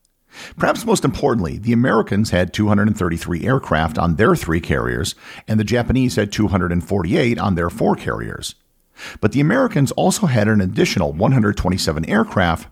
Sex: male